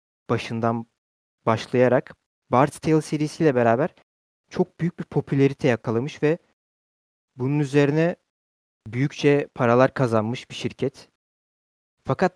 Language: Turkish